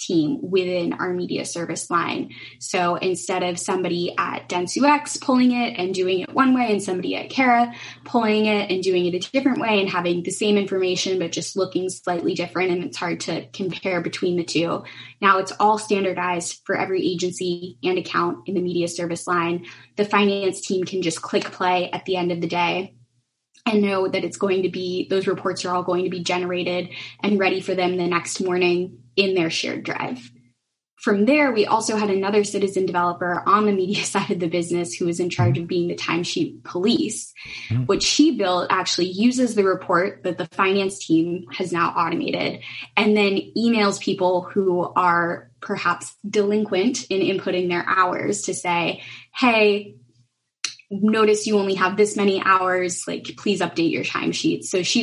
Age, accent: 10-29, American